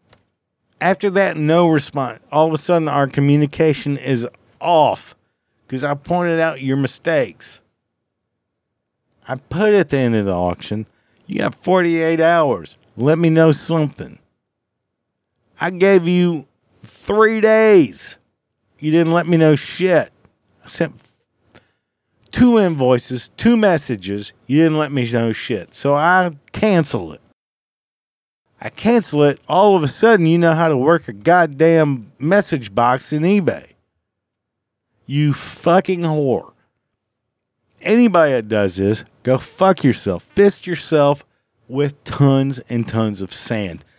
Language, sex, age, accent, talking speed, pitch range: English, male, 50-69, American, 135 wpm, 115-170 Hz